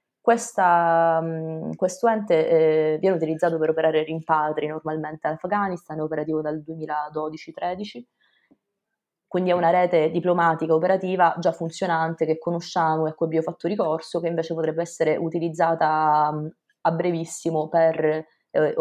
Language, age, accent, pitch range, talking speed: Italian, 20-39, native, 155-185 Hz, 135 wpm